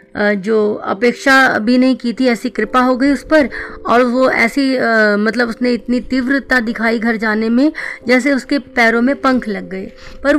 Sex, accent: female, native